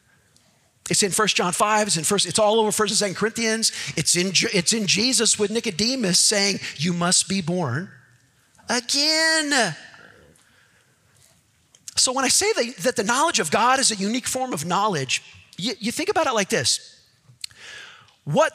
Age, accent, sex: 40-59, American, male